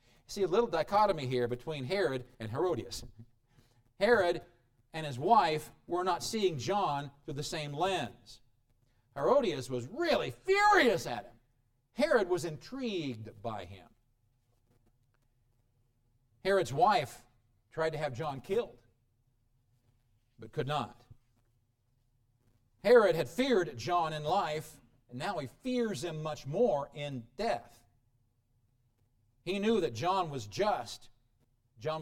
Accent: American